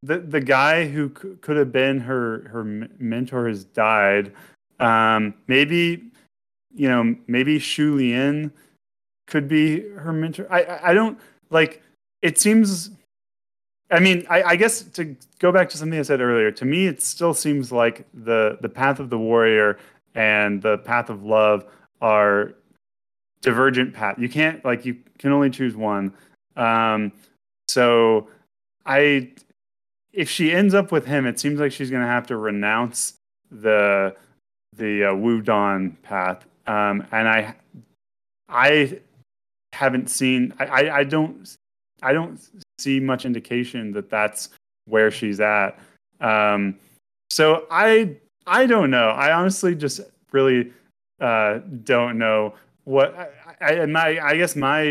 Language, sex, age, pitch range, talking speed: English, male, 30-49, 110-155 Hz, 150 wpm